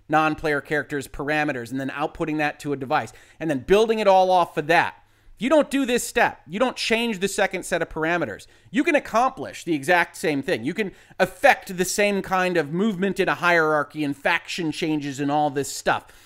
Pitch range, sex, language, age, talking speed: 145-200 Hz, male, English, 30-49, 205 wpm